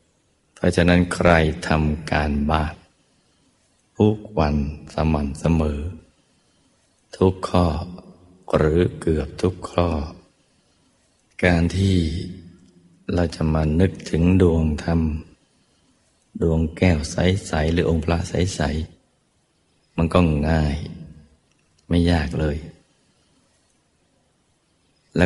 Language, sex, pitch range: Thai, male, 80-90 Hz